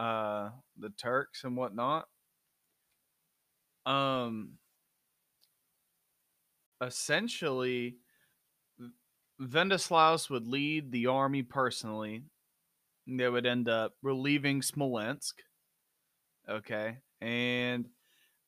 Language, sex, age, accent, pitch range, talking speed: English, male, 20-39, American, 115-140 Hz, 70 wpm